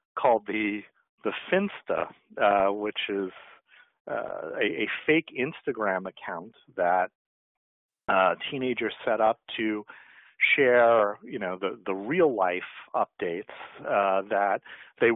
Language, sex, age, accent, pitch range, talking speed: English, male, 50-69, American, 100-125 Hz, 120 wpm